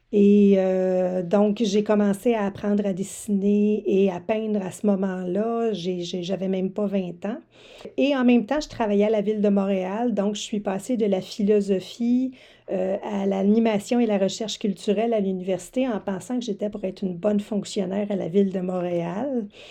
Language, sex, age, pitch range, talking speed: French, female, 40-59, 190-215 Hz, 190 wpm